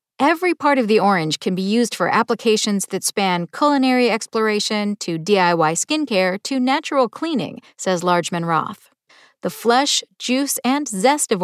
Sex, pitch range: female, 180-260 Hz